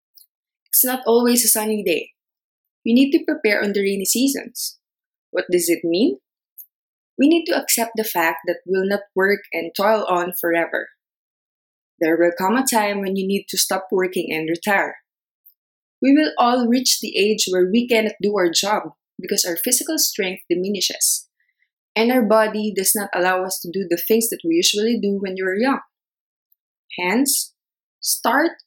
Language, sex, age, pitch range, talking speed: English, female, 20-39, 185-255 Hz, 175 wpm